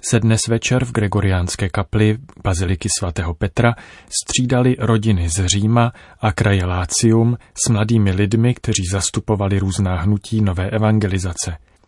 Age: 30-49